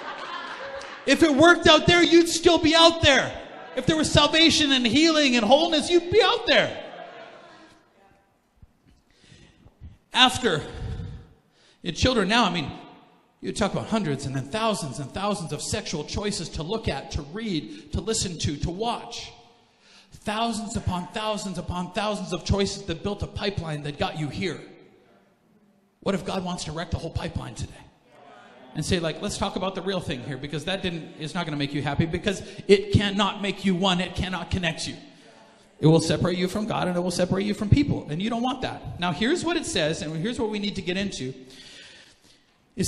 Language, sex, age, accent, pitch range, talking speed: English, male, 40-59, American, 175-225 Hz, 190 wpm